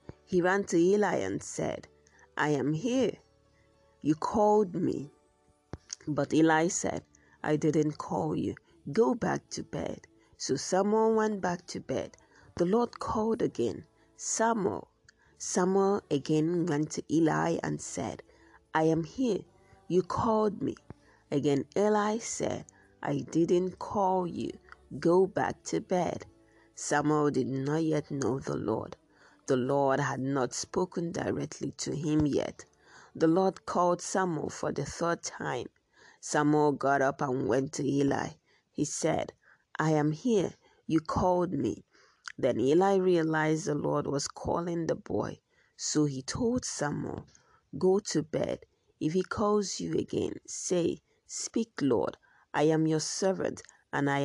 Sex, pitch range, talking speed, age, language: female, 145-190 Hz, 140 wpm, 30-49, English